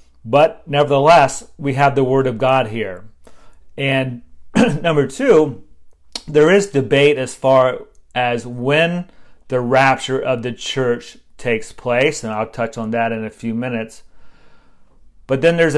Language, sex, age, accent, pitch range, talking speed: English, male, 40-59, American, 125-155 Hz, 145 wpm